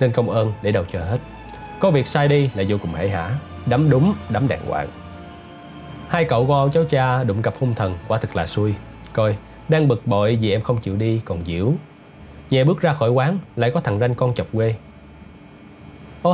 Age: 20-39